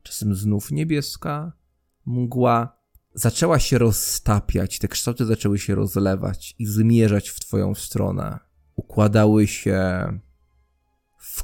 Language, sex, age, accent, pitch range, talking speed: English, male, 20-39, Polish, 95-125 Hz, 105 wpm